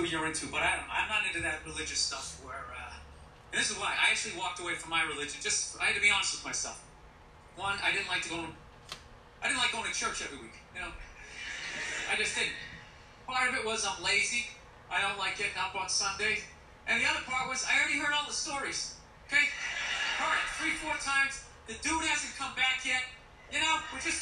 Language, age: English, 30-49